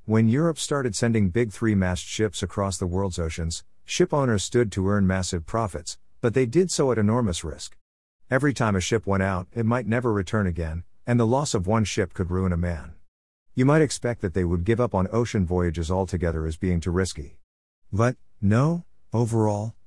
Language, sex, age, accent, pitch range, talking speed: English, male, 50-69, American, 90-115 Hz, 200 wpm